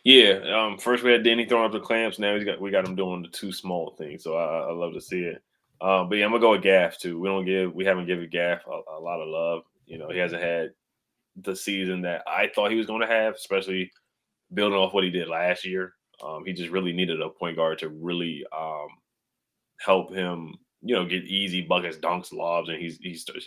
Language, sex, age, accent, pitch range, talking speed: English, male, 20-39, American, 85-100 Hz, 240 wpm